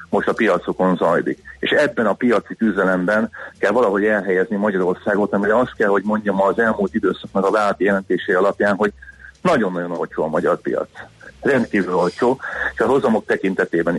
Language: Hungarian